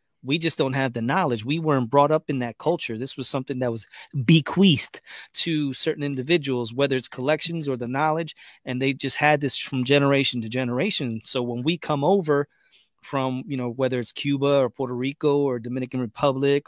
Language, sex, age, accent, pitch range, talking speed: English, male, 30-49, American, 125-145 Hz, 195 wpm